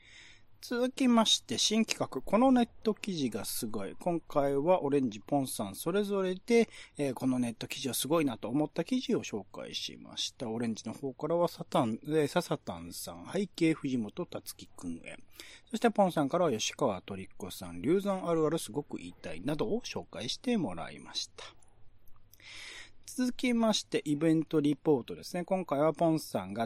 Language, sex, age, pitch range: Japanese, male, 40-59, 125-205 Hz